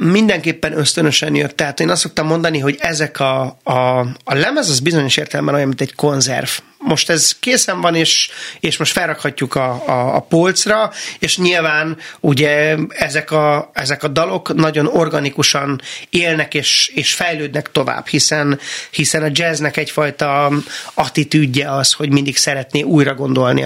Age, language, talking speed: 30-49, Hungarian, 150 wpm